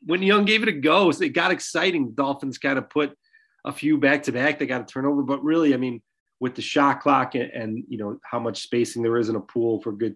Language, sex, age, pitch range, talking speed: English, male, 30-49, 110-140 Hz, 260 wpm